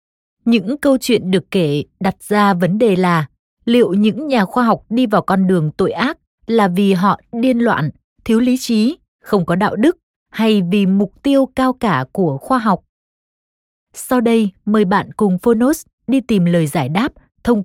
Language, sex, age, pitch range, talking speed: Vietnamese, female, 20-39, 180-230 Hz, 185 wpm